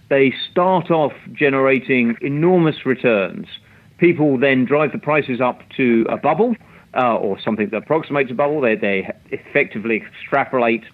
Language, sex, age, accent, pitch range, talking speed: English, male, 40-59, British, 120-155 Hz, 145 wpm